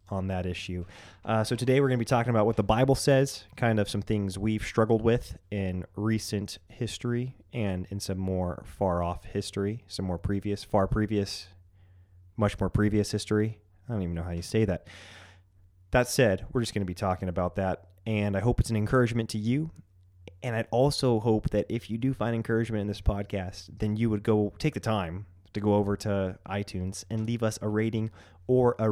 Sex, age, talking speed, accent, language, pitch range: male, 20-39, 205 wpm, American, English, 95-115 Hz